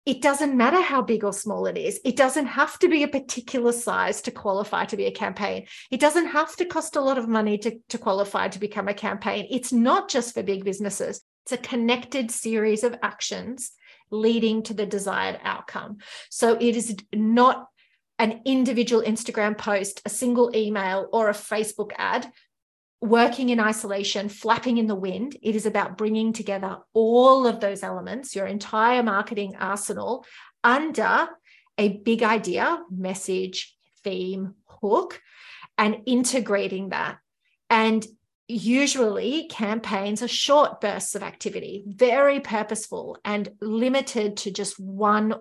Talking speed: 155 wpm